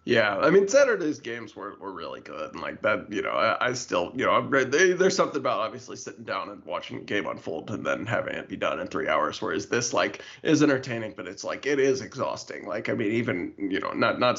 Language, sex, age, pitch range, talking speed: English, male, 20-39, 110-140 Hz, 245 wpm